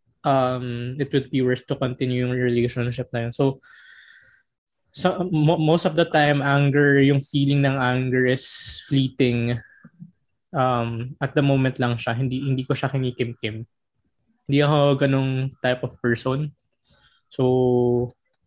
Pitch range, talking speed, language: 125-150 Hz, 140 wpm, Filipino